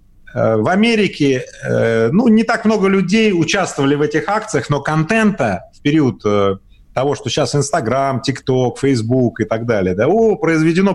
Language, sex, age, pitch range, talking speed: Russian, male, 30-49, 120-180 Hz, 135 wpm